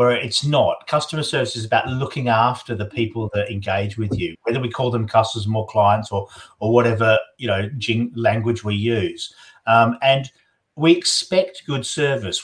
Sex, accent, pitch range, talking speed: male, Australian, 110-130 Hz, 190 wpm